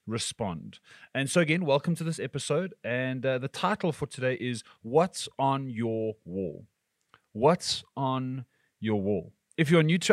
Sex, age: male, 30-49